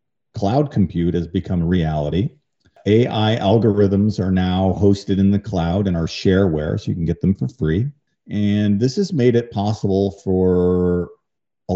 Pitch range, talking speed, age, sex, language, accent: 90-105 Hz, 165 wpm, 50-69, male, English, American